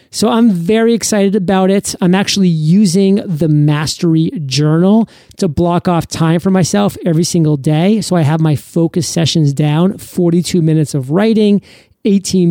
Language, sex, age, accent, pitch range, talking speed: English, male, 30-49, American, 150-185 Hz, 160 wpm